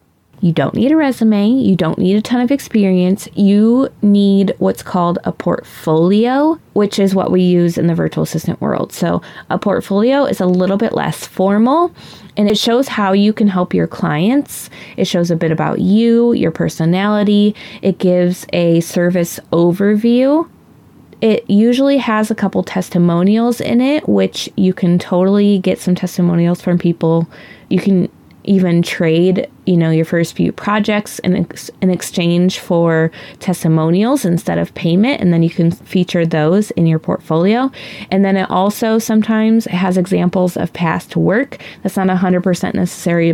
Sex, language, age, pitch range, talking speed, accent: female, English, 20-39, 170-210 Hz, 160 wpm, American